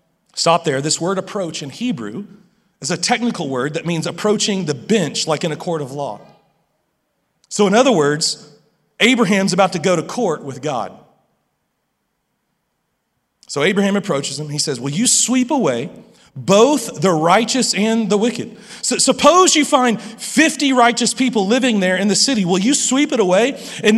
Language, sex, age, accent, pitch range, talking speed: English, male, 40-59, American, 195-265 Hz, 170 wpm